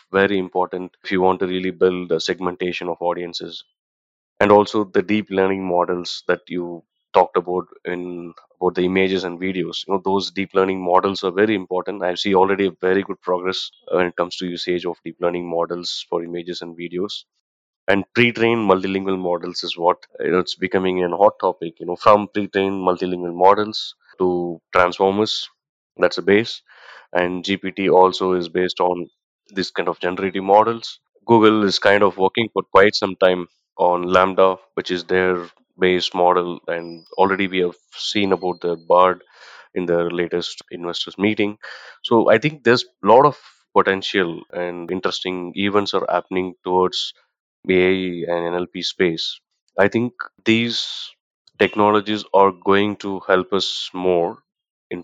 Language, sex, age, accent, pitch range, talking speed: English, male, 20-39, Indian, 90-95 Hz, 160 wpm